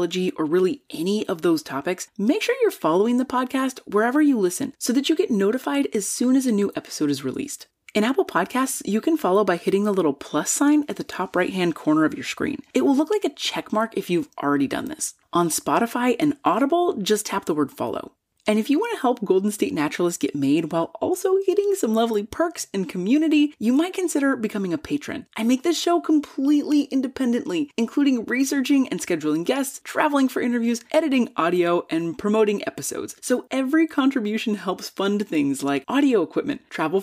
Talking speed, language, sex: 200 wpm, English, female